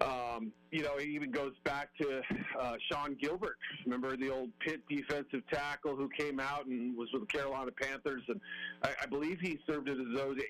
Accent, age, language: American, 40-59, English